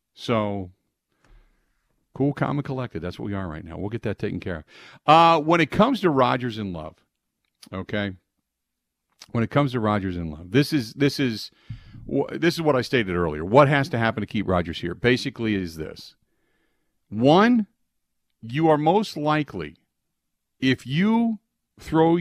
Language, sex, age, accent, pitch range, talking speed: English, male, 50-69, American, 95-145 Hz, 170 wpm